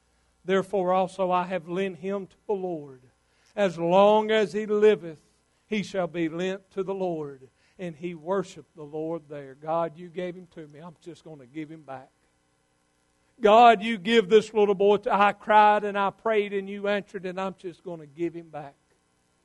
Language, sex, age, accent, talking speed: English, male, 60-79, American, 195 wpm